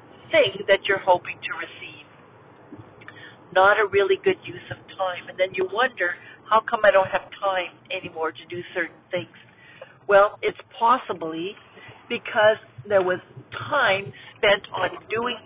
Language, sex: English, female